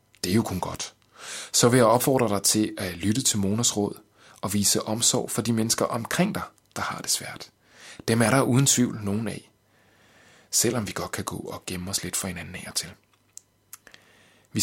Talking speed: 200 wpm